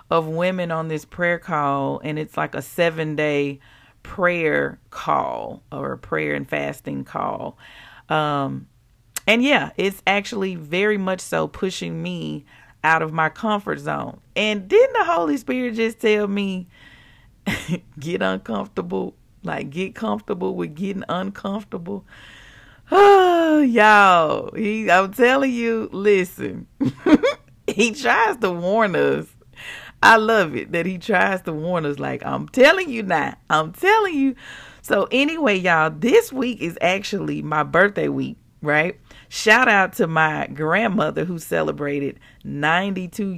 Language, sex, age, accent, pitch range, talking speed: English, female, 40-59, American, 150-215 Hz, 135 wpm